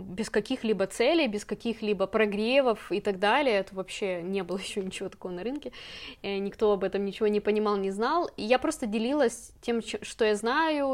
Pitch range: 200-255 Hz